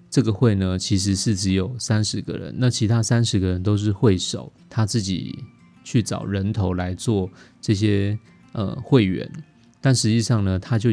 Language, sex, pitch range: Chinese, male, 95-120 Hz